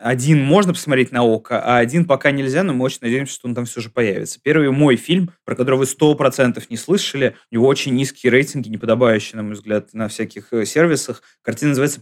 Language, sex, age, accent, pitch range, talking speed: Russian, male, 20-39, native, 125-155 Hz, 210 wpm